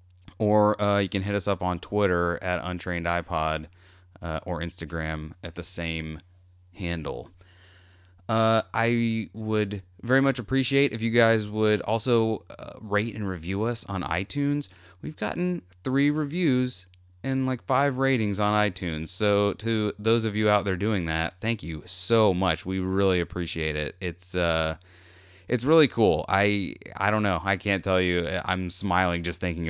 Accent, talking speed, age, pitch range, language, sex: American, 160 wpm, 30-49, 90-115 Hz, English, male